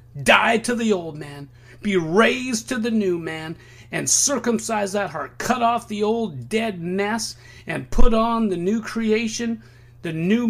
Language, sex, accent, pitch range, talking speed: English, male, American, 120-190 Hz, 165 wpm